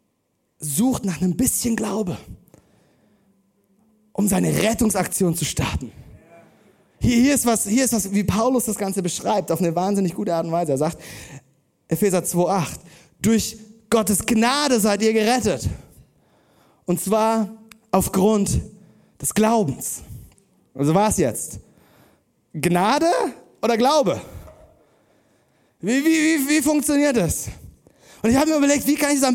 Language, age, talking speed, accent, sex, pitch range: German, 30-49, 135 wpm, German, male, 190-250 Hz